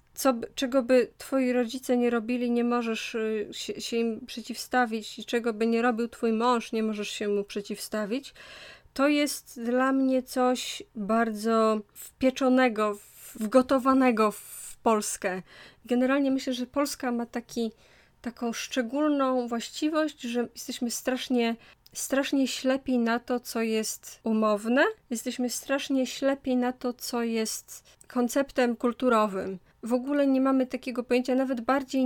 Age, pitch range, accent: 20-39, 230-260 Hz, native